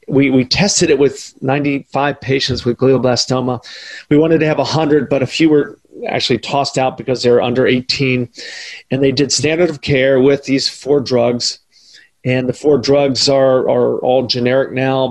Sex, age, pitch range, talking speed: male, 40-59, 125-145 Hz, 185 wpm